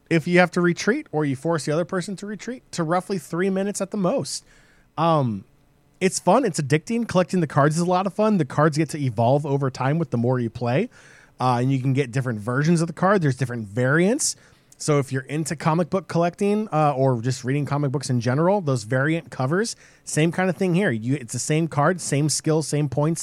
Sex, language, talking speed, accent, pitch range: male, English, 230 wpm, American, 130-170 Hz